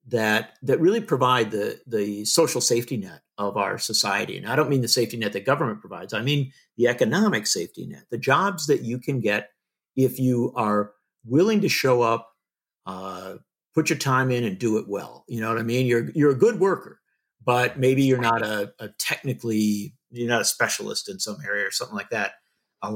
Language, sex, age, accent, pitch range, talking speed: English, male, 50-69, American, 105-145 Hz, 205 wpm